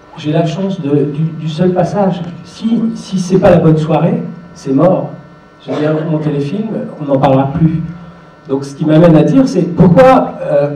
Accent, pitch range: French, 145-175 Hz